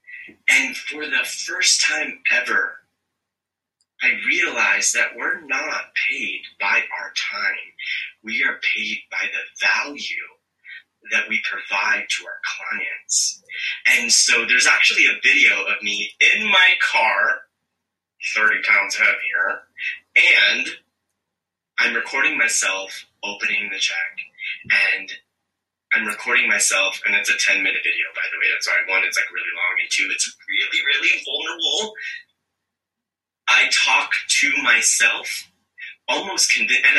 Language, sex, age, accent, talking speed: English, male, 30-49, American, 130 wpm